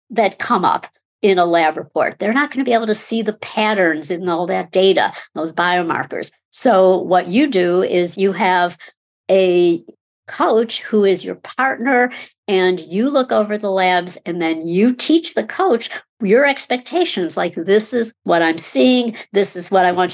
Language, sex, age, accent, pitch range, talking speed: English, female, 60-79, American, 180-235 Hz, 180 wpm